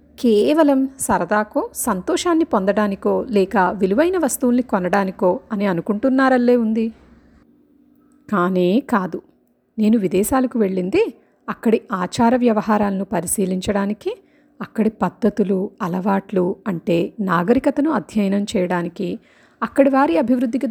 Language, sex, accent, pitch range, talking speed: Telugu, female, native, 195-275 Hz, 85 wpm